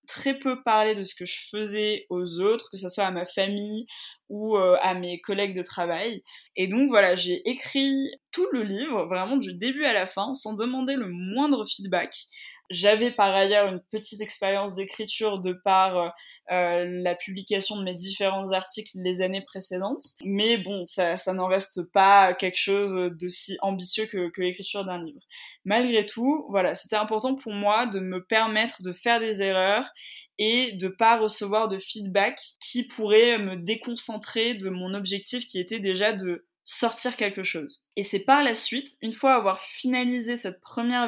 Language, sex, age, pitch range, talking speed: French, female, 20-39, 185-230 Hz, 180 wpm